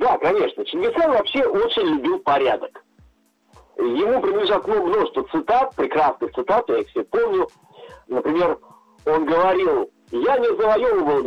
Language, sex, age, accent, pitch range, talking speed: Russian, male, 50-69, native, 335-440 Hz, 120 wpm